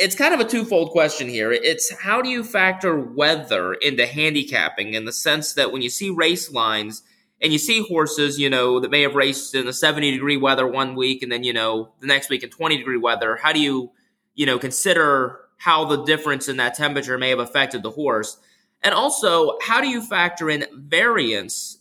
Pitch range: 125-155 Hz